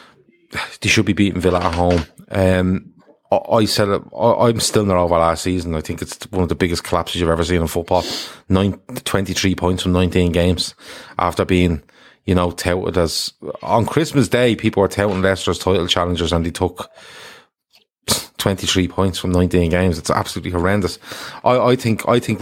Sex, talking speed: male, 185 wpm